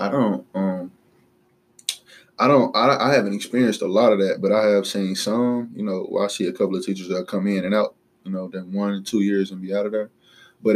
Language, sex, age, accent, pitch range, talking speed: English, male, 20-39, American, 95-105 Hz, 250 wpm